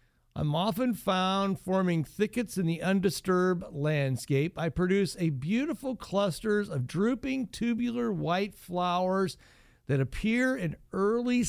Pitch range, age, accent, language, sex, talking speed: 155-210 Hz, 50-69, American, English, male, 120 wpm